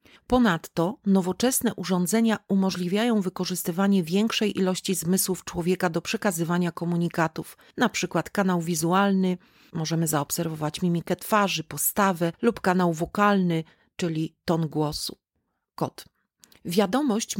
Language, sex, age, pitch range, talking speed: Polish, female, 40-59, 175-205 Hz, 95 wpm